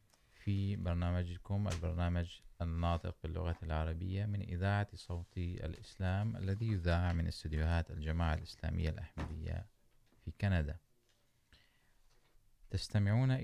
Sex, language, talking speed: male, Urdu, 90 wpm